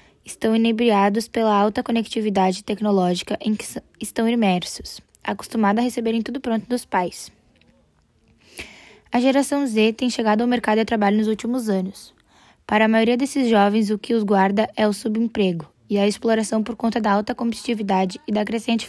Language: Portuguese